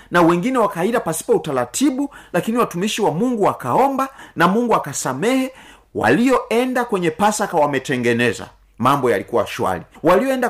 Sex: male